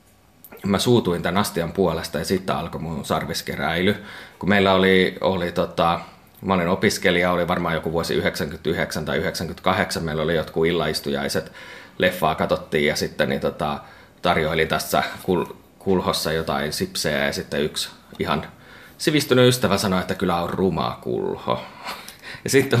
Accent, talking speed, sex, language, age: native, 140 wpm, male, Finnish, 30-49